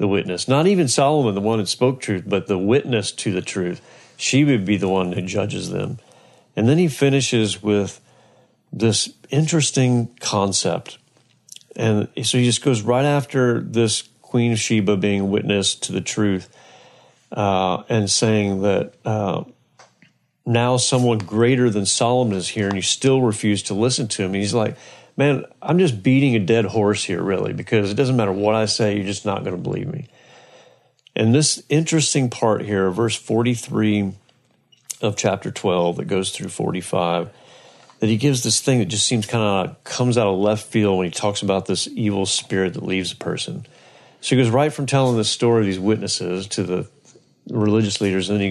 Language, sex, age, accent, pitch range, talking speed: English, male, 40-59, American, 100-125 Hz, 185 wpm